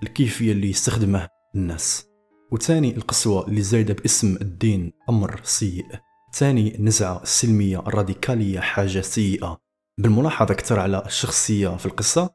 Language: Arabic